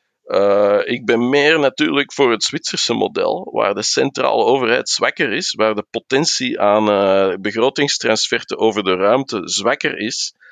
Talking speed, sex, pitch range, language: 150 wpm, male, 110-170 Hz, Dutch